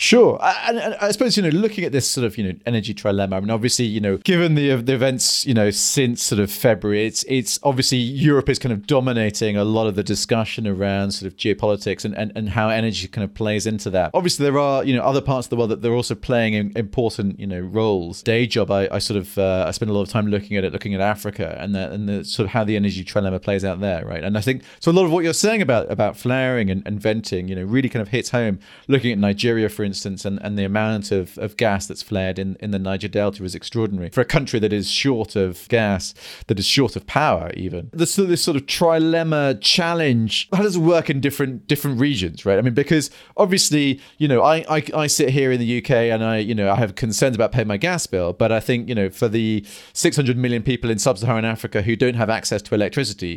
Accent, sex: British, male